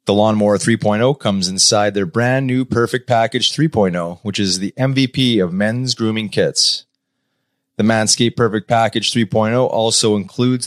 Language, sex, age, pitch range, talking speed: English, male, 30-49, 105-125 Hz, 145 wpm